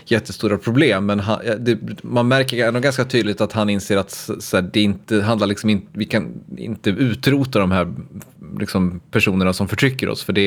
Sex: male